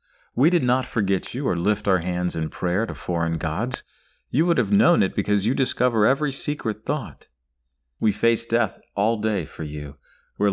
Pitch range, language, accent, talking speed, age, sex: 70-115 Hz, English, American, 190 wpm, 40-59, male